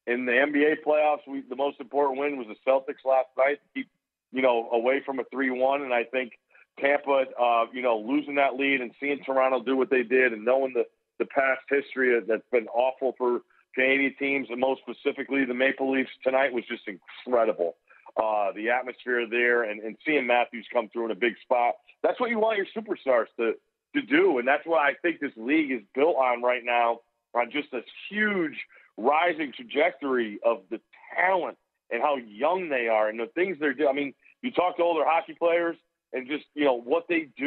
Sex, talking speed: male, 205 wpm